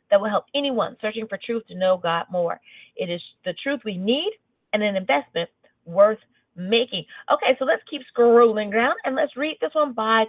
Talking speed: 200 wpm